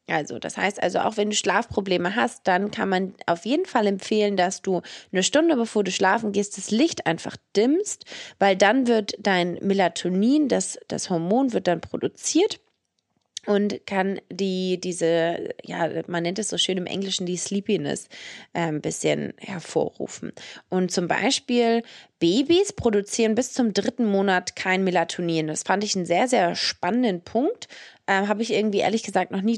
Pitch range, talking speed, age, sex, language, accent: 180-230 Hz, 170 wpm, 20-39, female, English, German